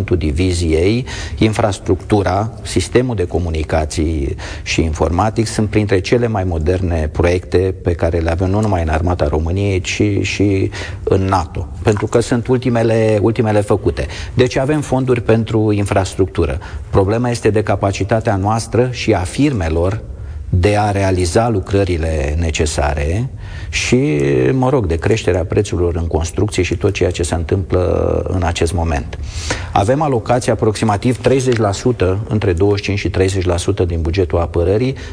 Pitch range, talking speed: 85-110 Hz, 135 wpm